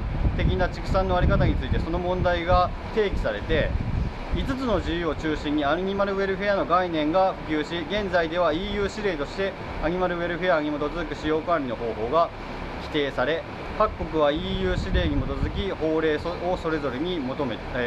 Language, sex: Japanese, male